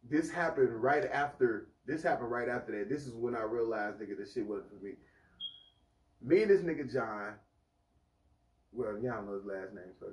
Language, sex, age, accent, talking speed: English, male, 20-39, American, 195 wpm